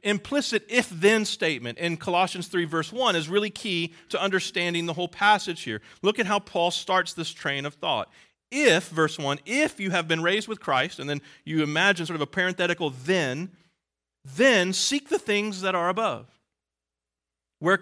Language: English